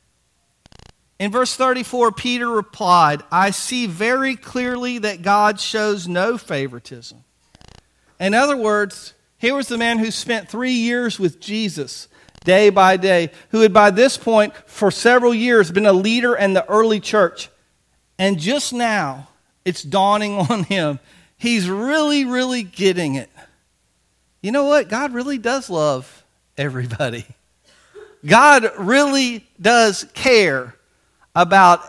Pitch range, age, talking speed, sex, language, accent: 165-220 Hz, 40-59, 130 wpm, male, English, American